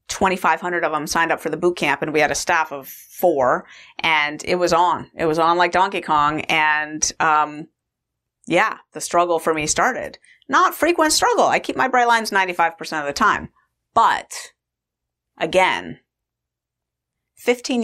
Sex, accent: female, American